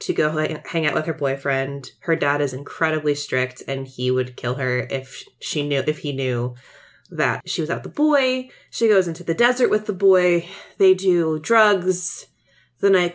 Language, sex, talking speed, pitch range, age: English, female, 195 wpm, 155-240 Hz, 20-39